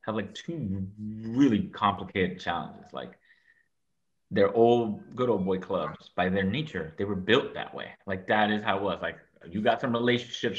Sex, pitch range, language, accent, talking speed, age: male, 95-115 Hz, English, American, 180 wpm, 30-49